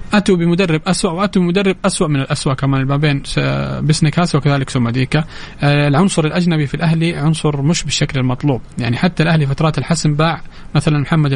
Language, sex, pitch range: English, male, 140-165 Hz